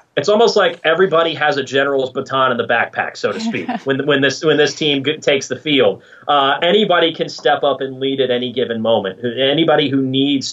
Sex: male